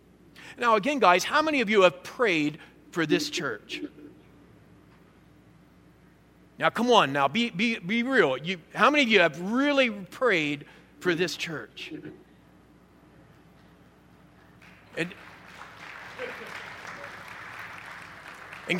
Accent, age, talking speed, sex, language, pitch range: American, 50-69, 105 wpm, male, English, 155-255 Hz